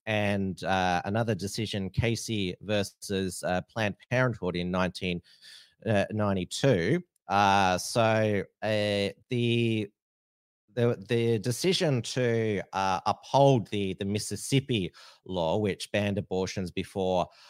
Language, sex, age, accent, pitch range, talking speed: English, male, 30-49, Australian, 90-115 Hz, 105 wpm